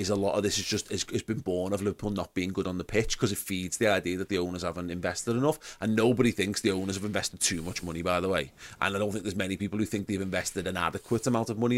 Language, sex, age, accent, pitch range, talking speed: English, male, 30-49, British, 95-110 Hz, 295 wpm